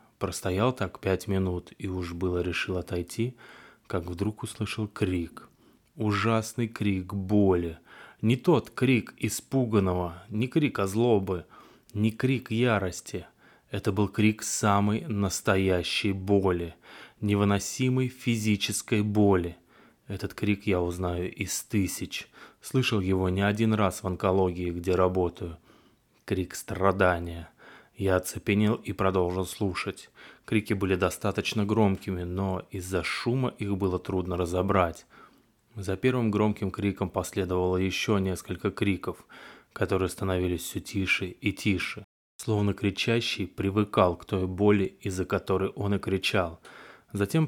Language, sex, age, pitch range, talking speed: Russian, male, 20-39, 90-105 Hz, 120 wpm